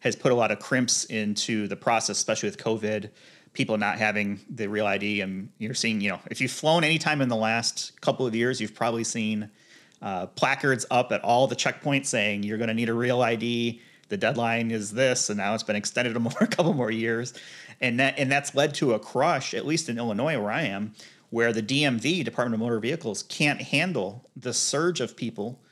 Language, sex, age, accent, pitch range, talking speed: English, male, 30-49, American, 110-125 Hz, 220 wpm